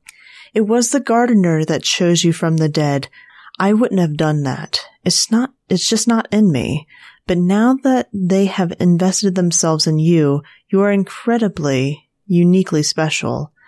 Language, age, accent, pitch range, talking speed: English, 30-49, American, 160-205 Hz, 160 wpm